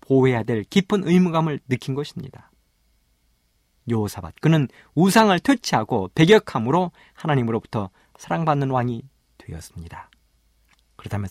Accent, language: native, Korean